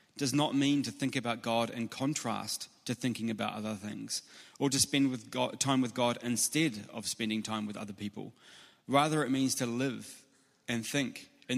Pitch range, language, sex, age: 115-140 Hz, English, male, 30-49